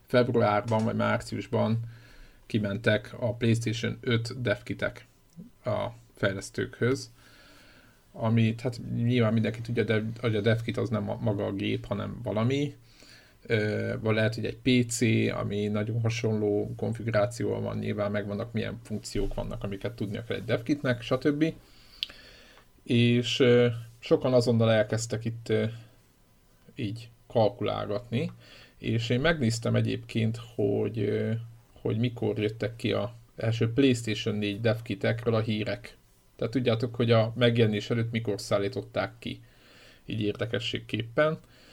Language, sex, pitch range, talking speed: Hungarian, male, 105-120 Hz, 120 wpm